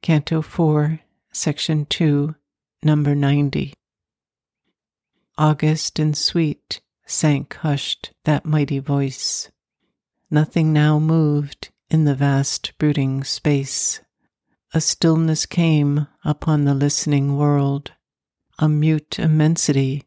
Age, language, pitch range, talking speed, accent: 60-79, English, 140-155 Hz, 95 wpm, American